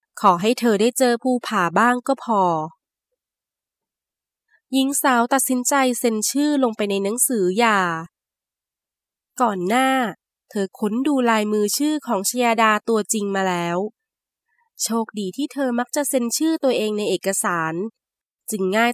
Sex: female